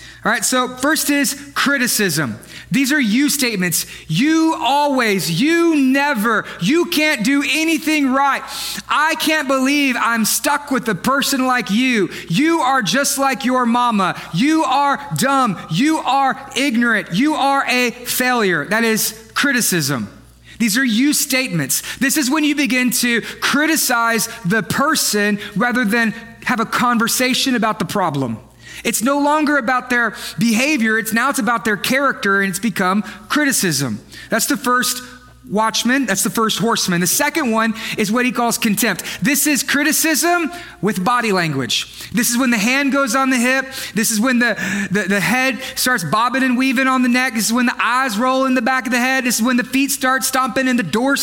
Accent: American